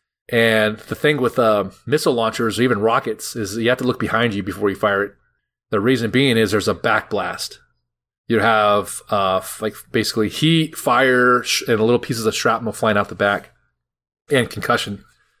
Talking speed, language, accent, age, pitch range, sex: 185 wpm, English, American, 30-49, 105-125 Hz, male